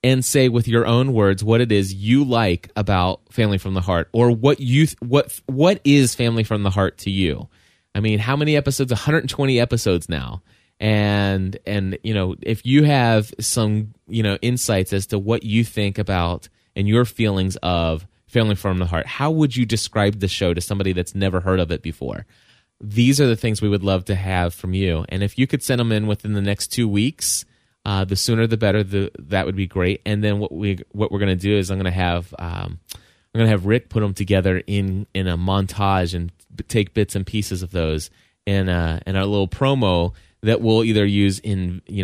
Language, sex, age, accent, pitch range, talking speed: English, male, 20-39, American, 95-115 Hz, 215 wpm